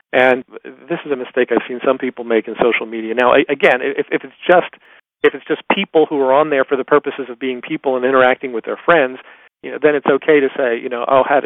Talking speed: 265 wpm